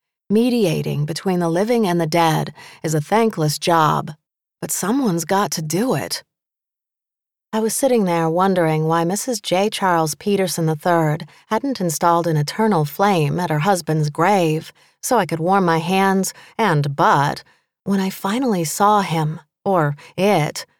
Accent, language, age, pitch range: American, English, 30-49, 160-200 Hz